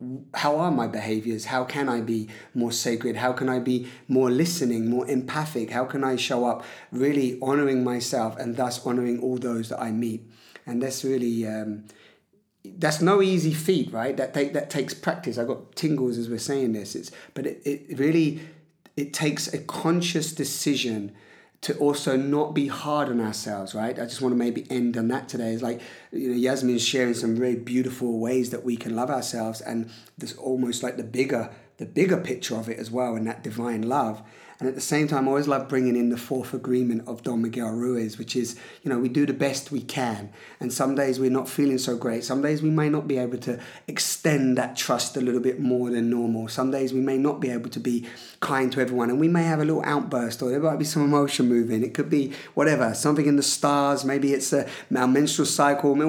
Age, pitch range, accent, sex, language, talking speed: 30-49, 120-140 Hz, British, male, English, 220 wpm